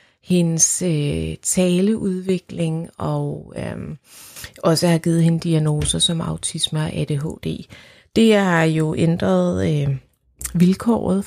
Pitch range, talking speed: 155-195 Hz, 90 wpm